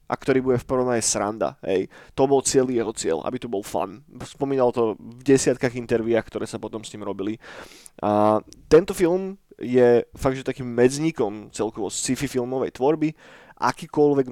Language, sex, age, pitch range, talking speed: Slovak, male, 20-39, 115-140 Hz, 170 wpm